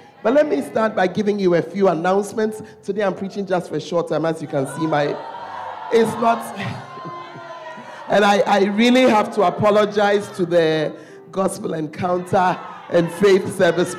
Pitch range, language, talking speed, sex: 145-195 Hz, English, 165 wpm, male